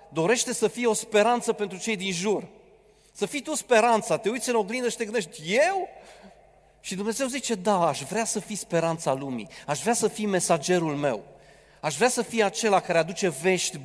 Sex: male